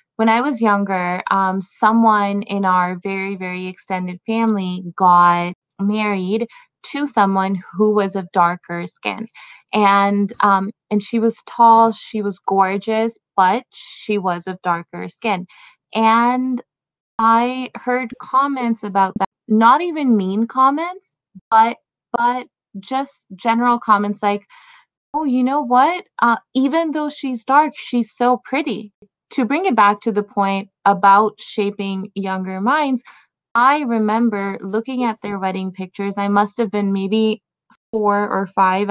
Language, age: English, 20-39